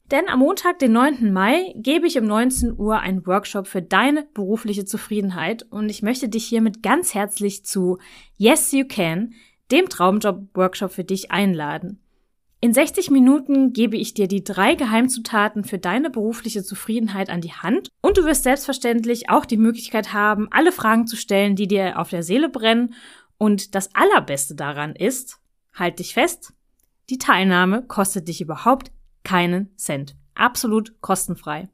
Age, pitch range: 20-39, 195-260 Hz